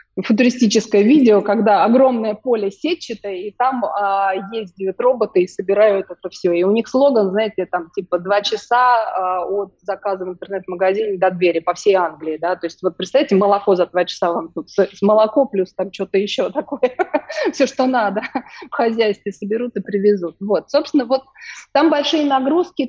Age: 20-39